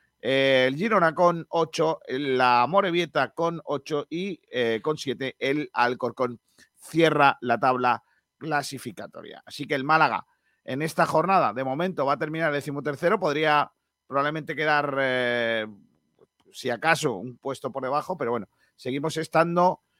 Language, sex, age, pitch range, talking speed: Spanish, male, 40-59, 125-150 Hz, 140 wpm